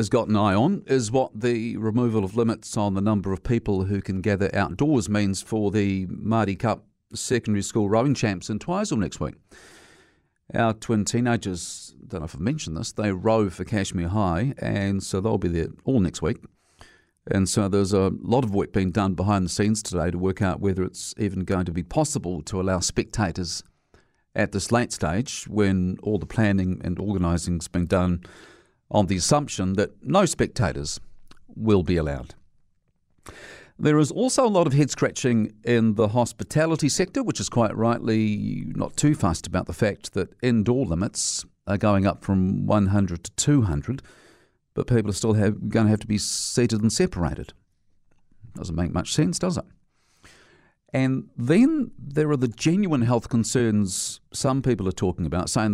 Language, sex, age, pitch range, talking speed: English, male, 40-59, 95-120 Hz, 180 wpm